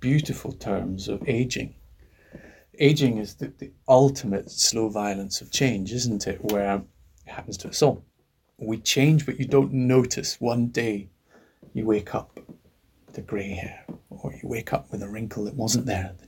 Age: 30-49